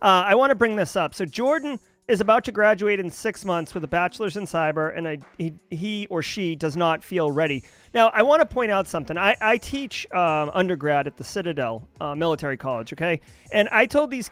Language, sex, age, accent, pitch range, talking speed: English, male, 30-49, American, 165-215 Hz, 225 wpm